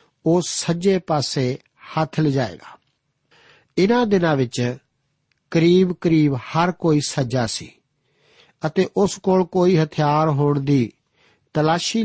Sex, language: male, Punjabi